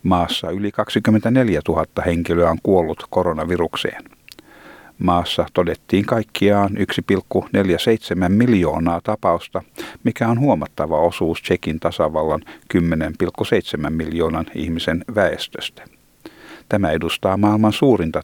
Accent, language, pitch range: native, Finnish, 90-115 Hz